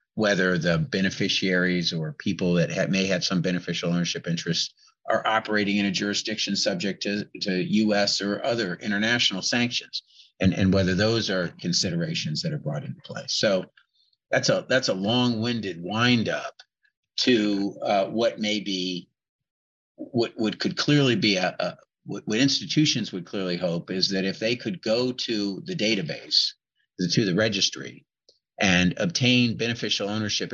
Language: English